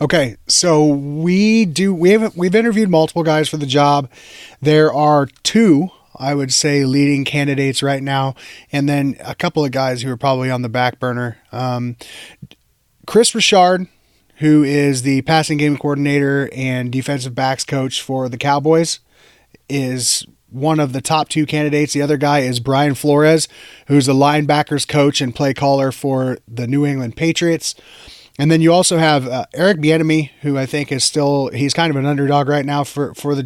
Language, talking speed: English, 180 wpm